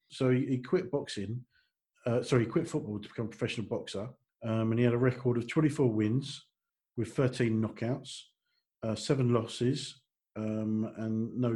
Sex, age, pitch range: male, 40-59, 110-130 Hz